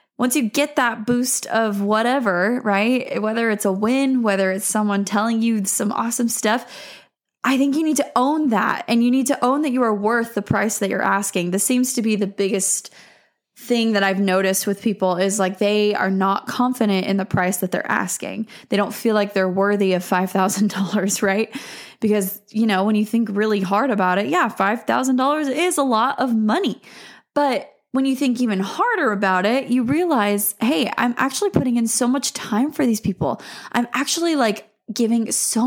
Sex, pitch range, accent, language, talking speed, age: female, 205-255 Hz, American, English, 195 wpm, 20-39